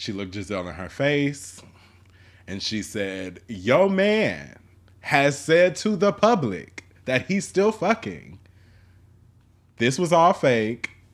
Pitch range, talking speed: 90-130 Hz, 130 wpm